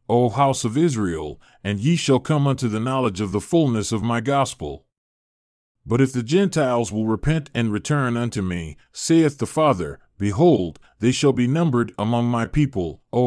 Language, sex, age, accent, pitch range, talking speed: English, male, 40-59, American, 105-140 Hz, 175 wpm